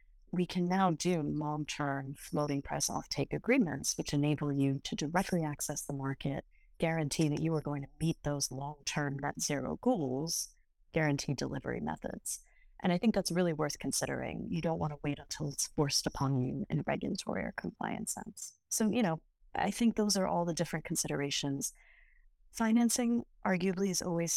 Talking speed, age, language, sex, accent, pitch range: 170 wpm, 30-49, English, female, American, 145-185 Hz